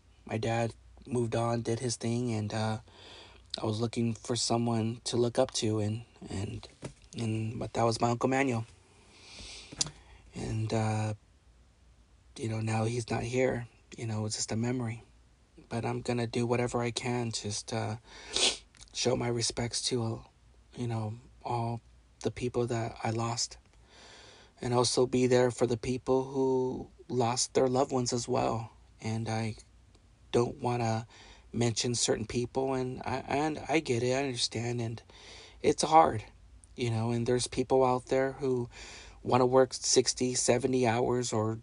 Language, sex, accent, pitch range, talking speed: English, male, American, 100-125 Hz, 160 wpm